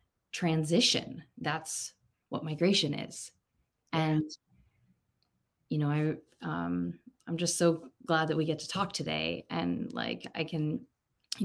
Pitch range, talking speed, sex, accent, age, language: 150-165 Hz, 130 wpm, female, American, 20-39, English